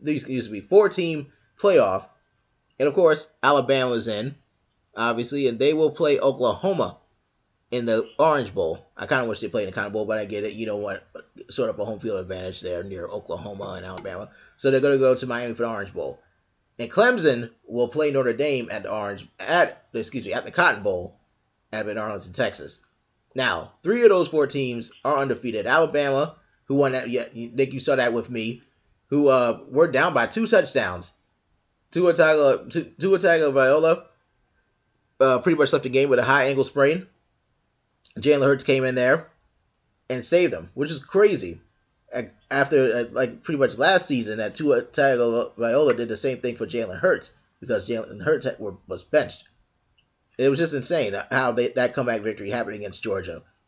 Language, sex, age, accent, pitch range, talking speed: English, male, 20-39, American, 115-145 Hz, 185 wpm